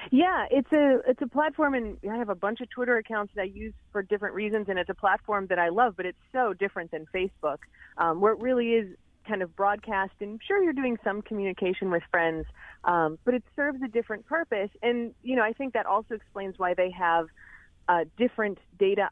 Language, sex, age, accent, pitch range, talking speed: English, female, 30-49, American, 160-215 Hz, 220 wpm